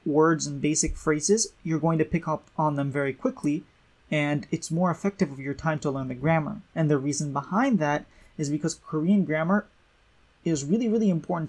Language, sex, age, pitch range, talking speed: English, male, 20-39, 150-190 Hz, 195 wpm